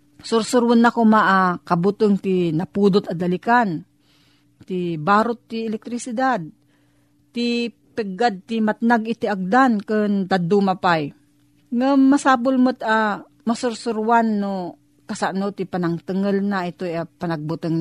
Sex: female